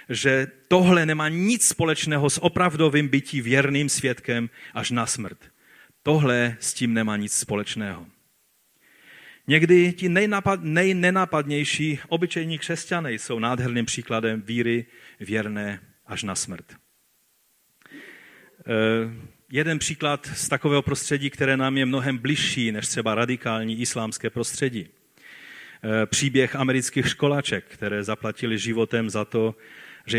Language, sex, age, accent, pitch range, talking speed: Czech, male, 40-59, native, 115-155 Hz, 110 wpm